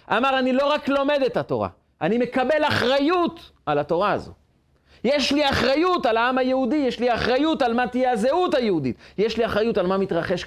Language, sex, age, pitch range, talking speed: Hebrew, male, 40-59, 115-165 Hz, 190 wpm